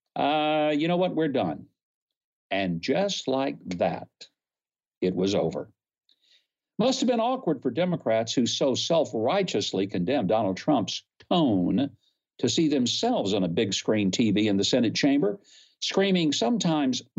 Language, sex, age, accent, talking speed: English, male, 60-79, American, 145 wpm